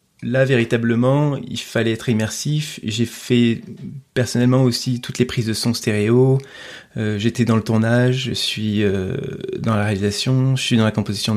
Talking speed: 170 wpm